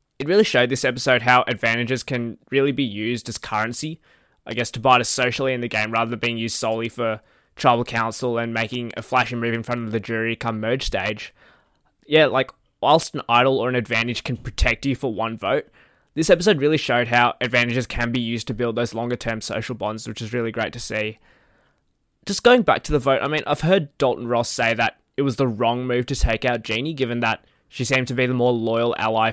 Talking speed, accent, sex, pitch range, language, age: 230 wpm, Australian, male, 115-135 Hz, English, 20-39